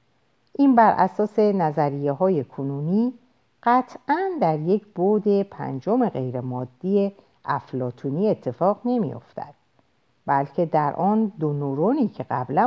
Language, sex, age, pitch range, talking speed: Persian, female, 50-69, 135-225 Hz, 110 wpm